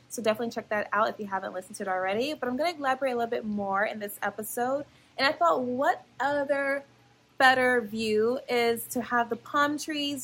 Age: 20-39